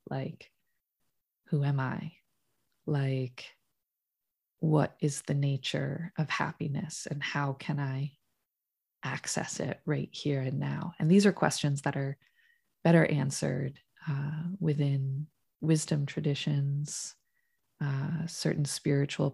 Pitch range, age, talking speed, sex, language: 145-170 Hz, 20-39, 110 wpm, female, English